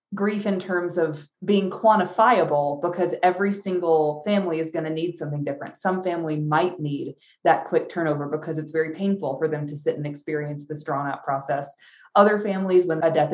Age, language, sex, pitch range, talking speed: 20-39, English, female, 160-210 Hz, 190 wpm